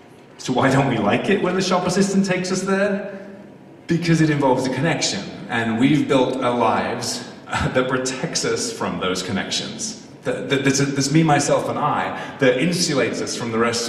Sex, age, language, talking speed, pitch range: male, 30-49, English, 195 wpm, 115-155 Hz